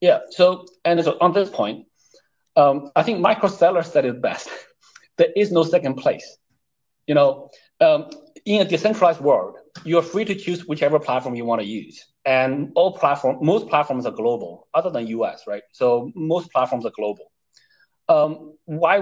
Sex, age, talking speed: male, 30-49, 175 wpm